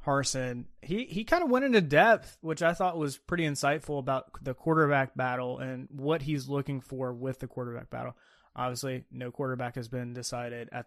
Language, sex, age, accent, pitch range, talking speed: English, male, 20-39, American, 130-160 Hz, 190 wpm